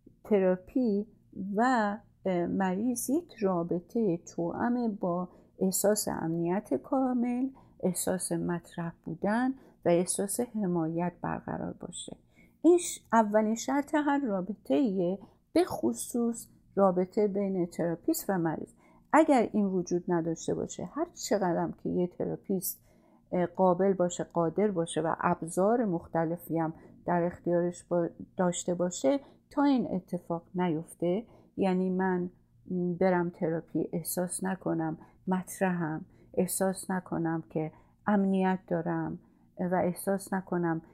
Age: 50-69